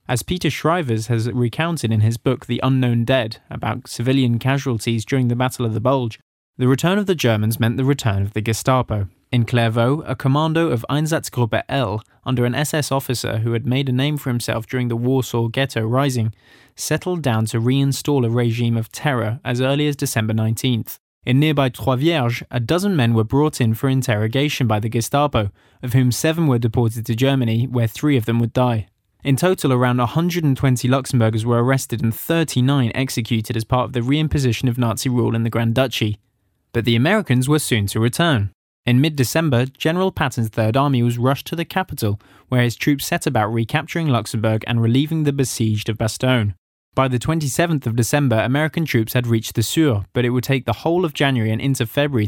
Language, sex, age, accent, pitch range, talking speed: English, male, 20-39, British, 115-140 Hz, 195 wpm